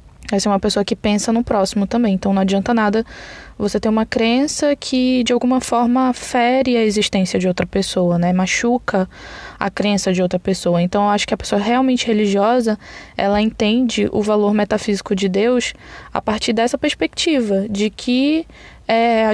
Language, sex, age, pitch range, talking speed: Portuguese, female, 10-29, 200-245 Hz, 180 wpm